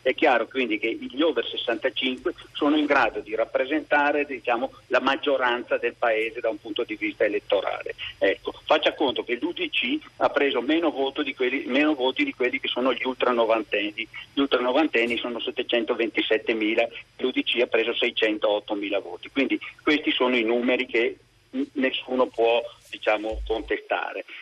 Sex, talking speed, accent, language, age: male, 155 wpm, native, Italian, 50-69